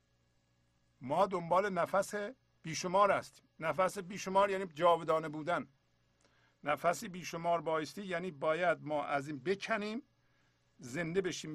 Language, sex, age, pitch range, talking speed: Persian, male, 50-69, 120-160 Hz, 110 wpm